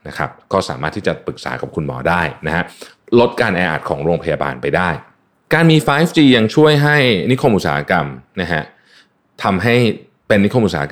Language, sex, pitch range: Thai, male, 85-125 Hz